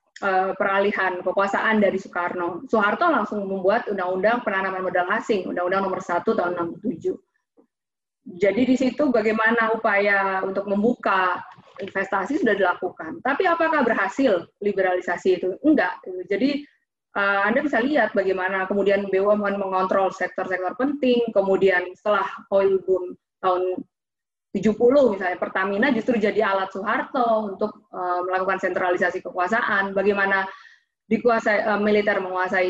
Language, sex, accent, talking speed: Indonesian, female, native, 115 wpm